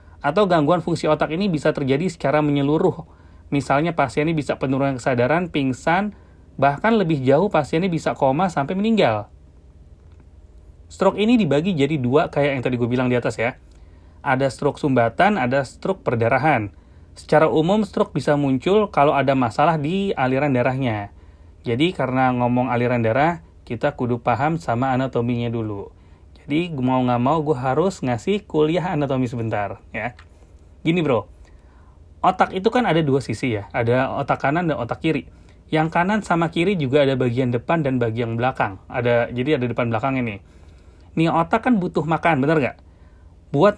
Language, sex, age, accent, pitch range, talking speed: Indonesian, male, 30-49, native, 115-160 Hz, 160 wpm